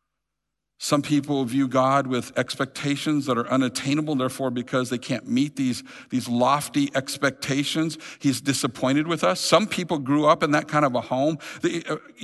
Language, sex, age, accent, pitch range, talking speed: English, male, 50-69, American, 140-200 Hz, 160 wpm